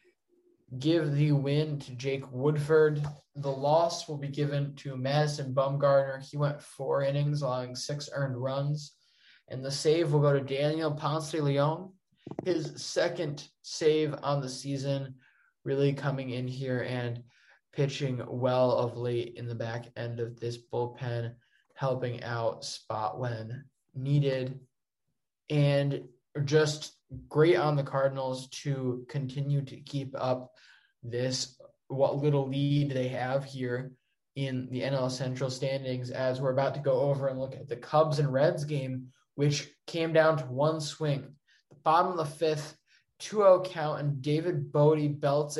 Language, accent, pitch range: English, American, 130-150 Hz